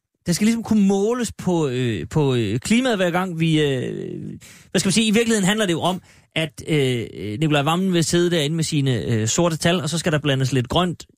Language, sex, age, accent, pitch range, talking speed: Danish, male, 30-49, native, 140-200 Hz, 230 wpm